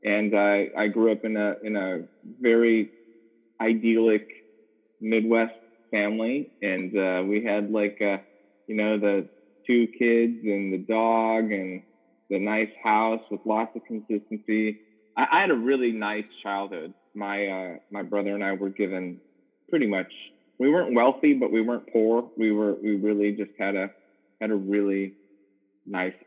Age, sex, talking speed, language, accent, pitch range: 20-39, male, 160 wpm, English, American, 100-120 Hz